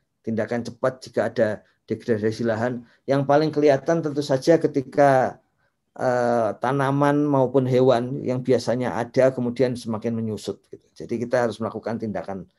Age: 50-69